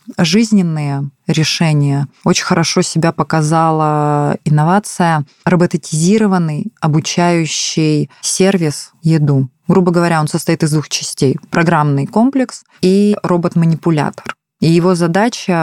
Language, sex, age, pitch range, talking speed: Russian, female, 20-39, 150-175 Hz, 95 wpm